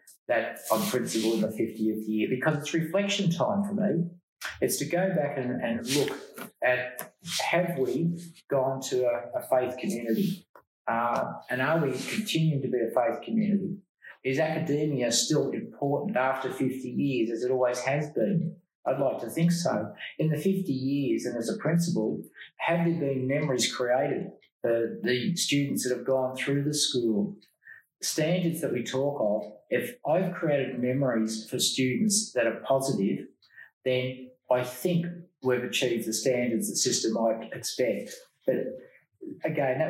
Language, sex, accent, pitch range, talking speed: English, male, Australian, 125-170 Hz, 160 wpm